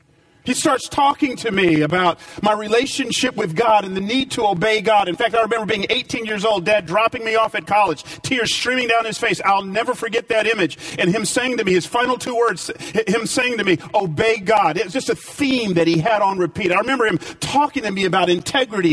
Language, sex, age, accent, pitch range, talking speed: English, male, 40-59, American, 175-270 Hz, 230 wpm